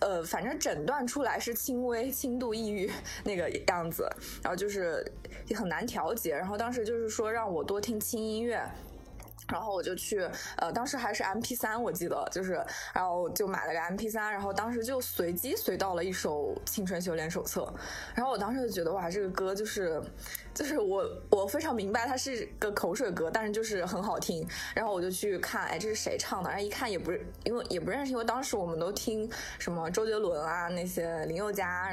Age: 20-39